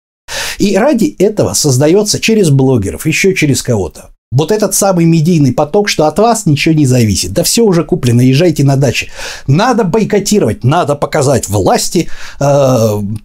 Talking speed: 150 wpm